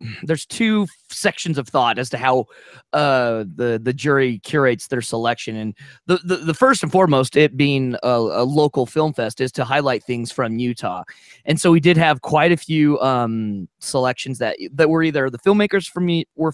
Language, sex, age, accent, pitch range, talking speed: English, male, 20-39, American, 120-155 Hz, 190 wpm